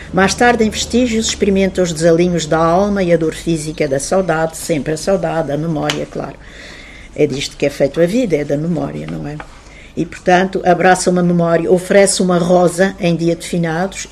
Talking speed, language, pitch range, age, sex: 190 wpm, Portuguese, 155-195 Hz, 60-79, female